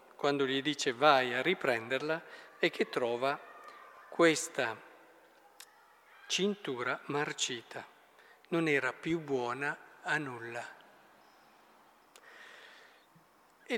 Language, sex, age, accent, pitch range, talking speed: Italian, male, 50-69, native, 140-200 Hz, 85 wpm